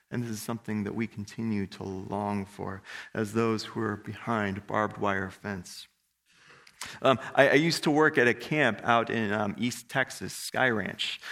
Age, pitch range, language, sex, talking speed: 30-49, 110-140 Hz, English, male, 180 wpm